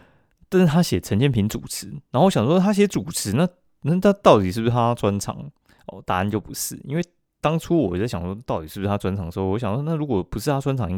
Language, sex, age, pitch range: Chinese, male, 20-39, 95-120 Hz